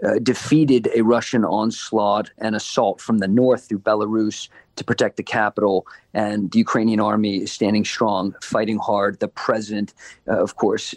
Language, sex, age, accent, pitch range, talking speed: English, male, 40-59, American, 105-120 Hz, 165 wpm